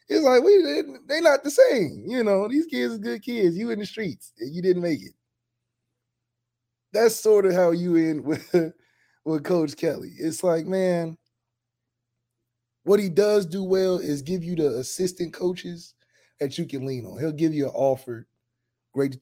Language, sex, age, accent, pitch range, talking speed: English, male, 20-39, American, 125-180 Hz, 180 wpm